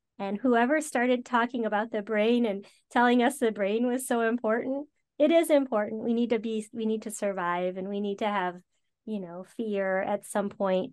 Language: English